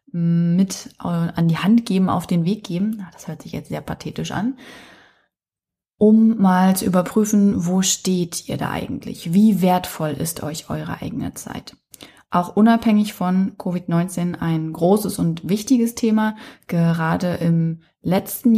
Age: 20-39